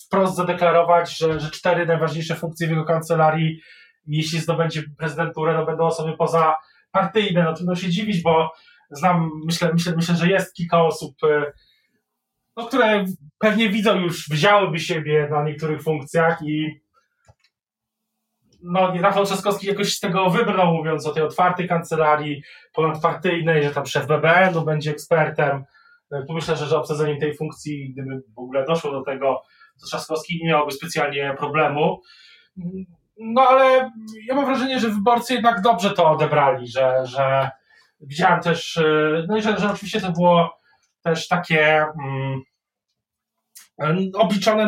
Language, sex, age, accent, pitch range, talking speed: Polish, male, 20-39, native, 155-185 Hz, 140 wpm